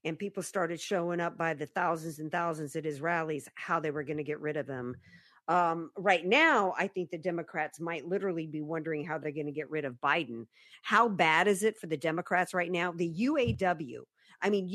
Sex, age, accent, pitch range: female, 50-69, American, 160-195 Hz